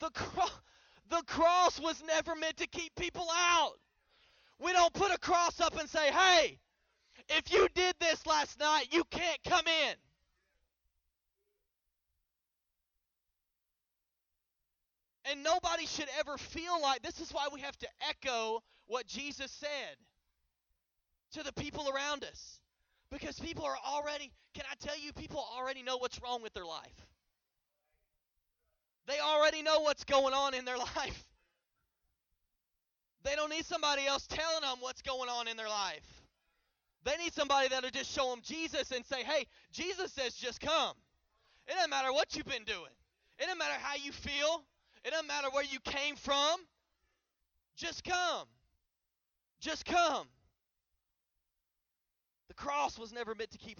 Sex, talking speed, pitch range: male, 150 wpm, 240-320 Hz